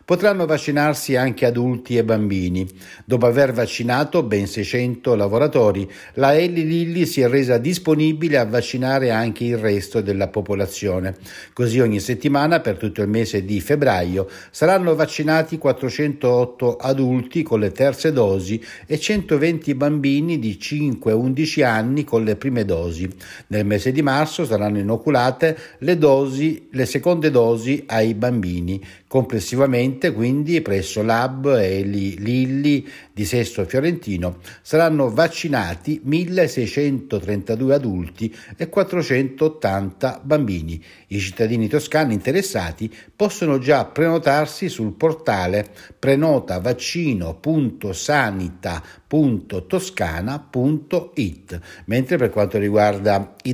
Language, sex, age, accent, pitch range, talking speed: Italian, male, 60-79, native, 105-150 Hz, 110 wpm